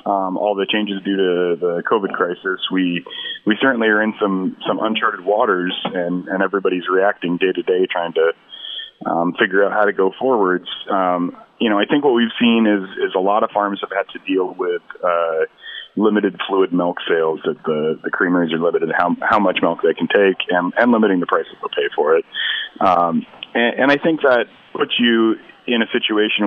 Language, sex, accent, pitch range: English, male, American, 90-135 Hz